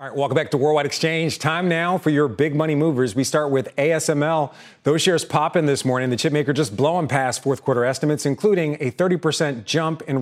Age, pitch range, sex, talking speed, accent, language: 40-59, 125-160 Hz, male, 225 wpm, American, English